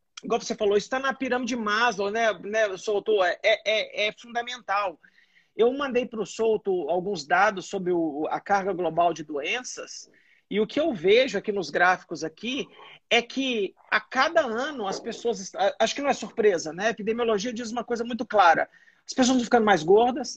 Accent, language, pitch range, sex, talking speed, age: Brazilian, Portuguese, 190-250 Hz, male, 185 wpm, 40-59